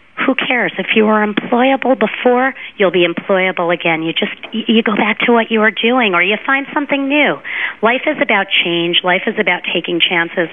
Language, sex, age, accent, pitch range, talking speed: English, female, 40-59, American, 165-205 Hz, 200 wpm